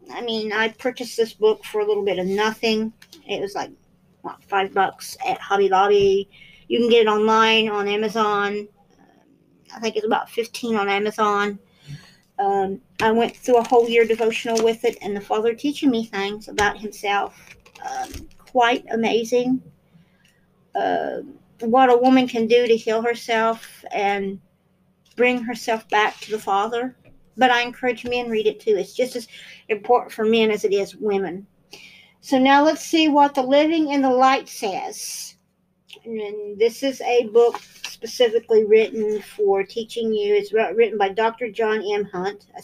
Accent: American